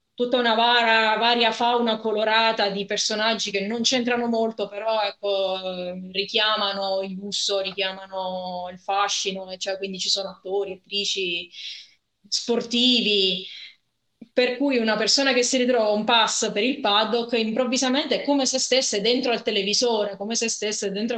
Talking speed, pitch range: 135 wpm, 200-235 Hz